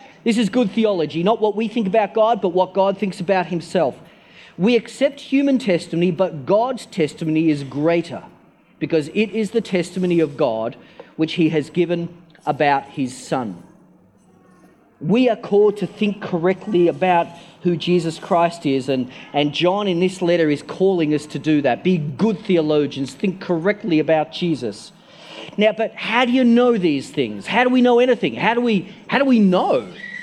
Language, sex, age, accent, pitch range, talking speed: English, male, 40-59, Australian, 165-215 Hz, 175 wpm